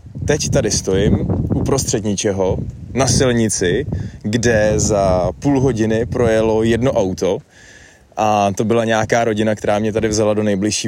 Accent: native